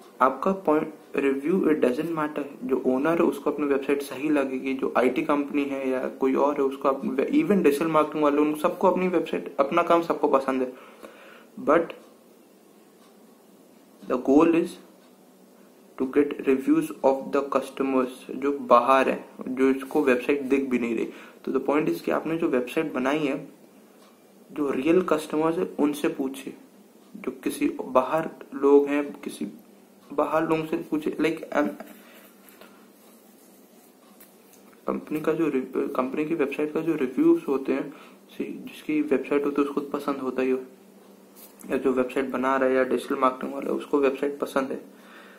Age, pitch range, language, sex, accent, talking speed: 20-39, 135-155 Hz, Hindi, male, native, 140 wpm